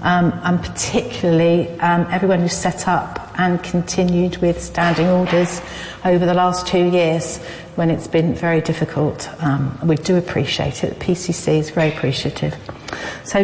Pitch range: 170-195 Hz